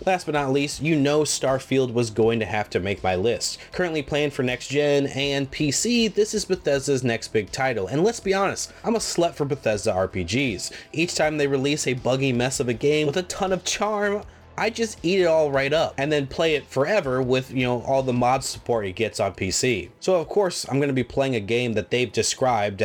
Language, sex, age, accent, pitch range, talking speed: English, male, 30-49, American, 105-145 Hz, 230 wpm